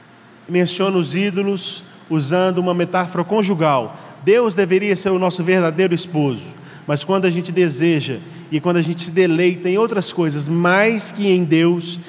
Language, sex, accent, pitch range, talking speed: Portuguese, male, Brazilian, 160-185 Hz, 160 wpm